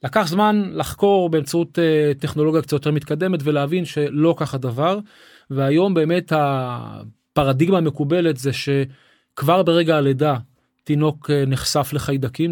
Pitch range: 145-195 Hz